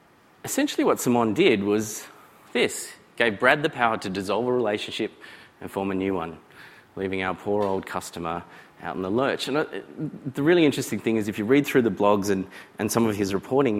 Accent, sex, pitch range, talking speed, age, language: Australian, male, 95-115 Hz, 200 wpm, 30-49, English